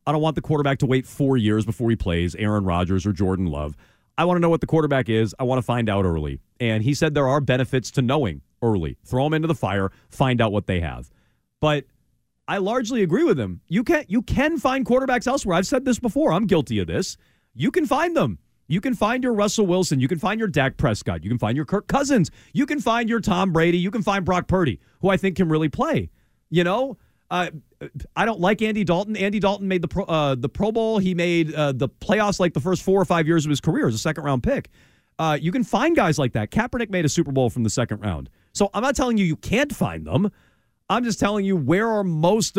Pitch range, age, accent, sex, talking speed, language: 125-195 Hz, 40-59, American, male, 250 wpm, English